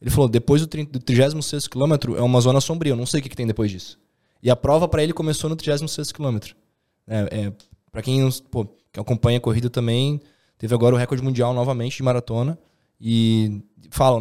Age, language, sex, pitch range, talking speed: 20-39, Portuguese, male, 115-140 Hz, 205 wpm